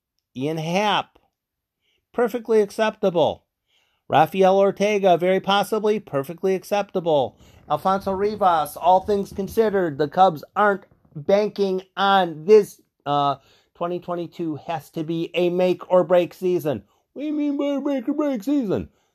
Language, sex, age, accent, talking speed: English, male, 50-69, American, 130 wpm